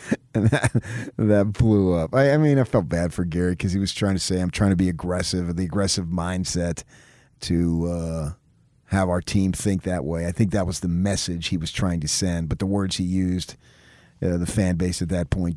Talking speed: 220 wpm